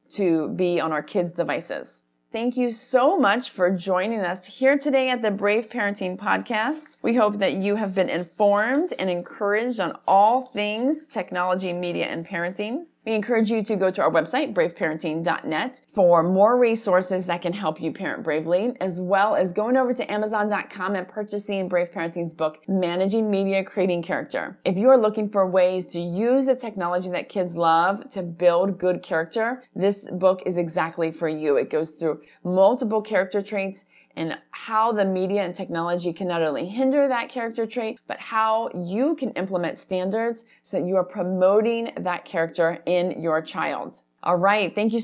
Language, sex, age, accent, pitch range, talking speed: English, female, 30-49, American, 175-225 Hz, 175 wpm